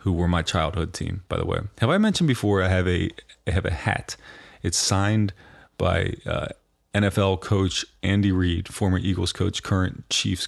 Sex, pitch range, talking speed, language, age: male, 85-105 Hz, 185 wpm, English, 30-49